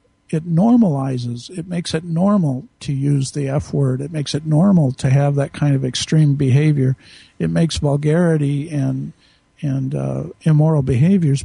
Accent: American